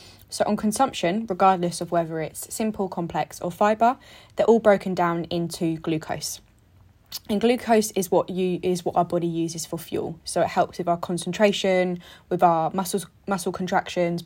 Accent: British